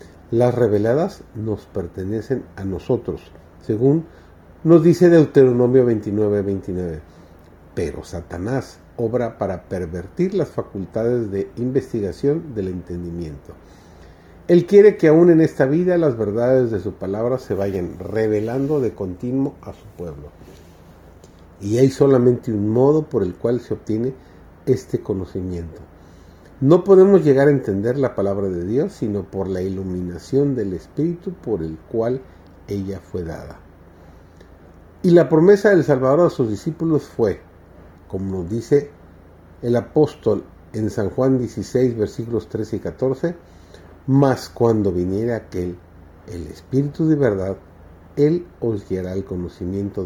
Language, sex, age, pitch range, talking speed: Spanish, male, 50-69, 90-130 Hz, 130 wpm